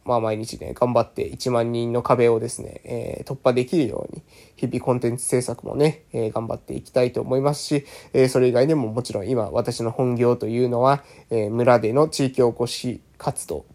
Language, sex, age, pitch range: Japanese, male, 20-39, 120-150 Hz